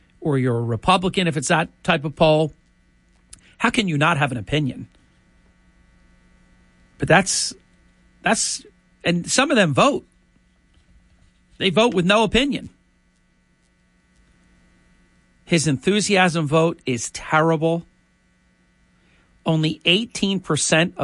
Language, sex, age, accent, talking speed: English, male, 50-69, American, 105 wpm